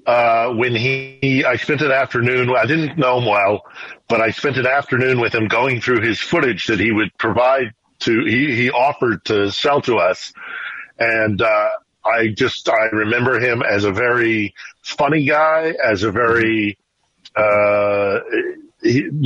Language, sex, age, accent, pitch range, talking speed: English, male, 50-69, American, 110-140 Hz, 165 wpm